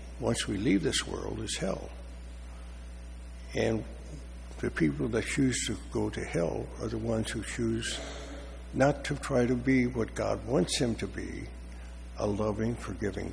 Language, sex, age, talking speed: English, male, 60-79, 160 wpm